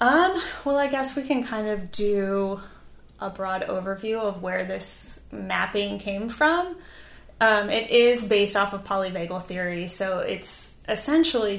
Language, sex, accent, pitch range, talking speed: English, female, American, 180-215 Hz, 150 wpm